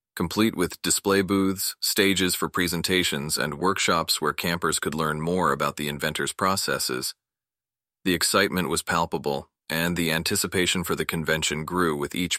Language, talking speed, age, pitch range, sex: English, 150 wpm, 30-49, 75-90 Hz, male